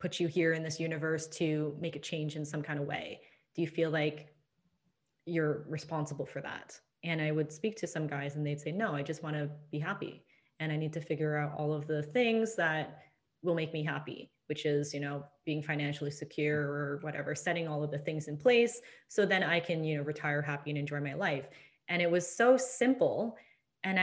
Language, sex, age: English, female, 20-39